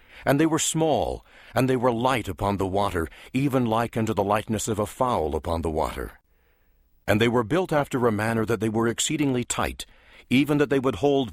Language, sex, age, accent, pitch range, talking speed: English, male, 60-79, American, 95-130 Hz, 205 wpm